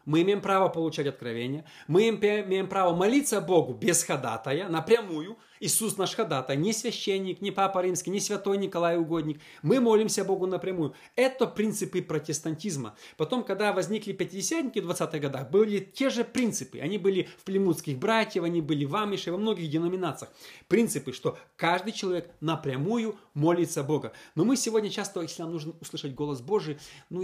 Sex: male